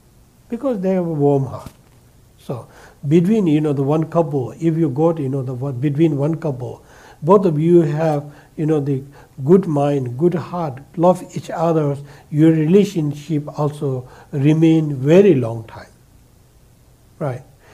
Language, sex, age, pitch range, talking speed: English, male, 60-79, 135-170 Hz, 150 wpm